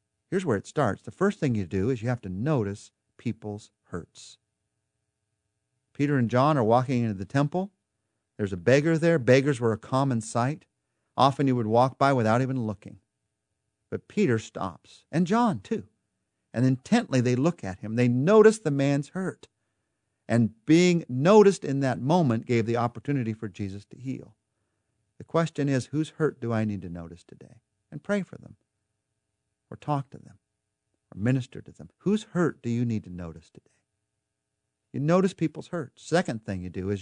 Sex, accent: male, American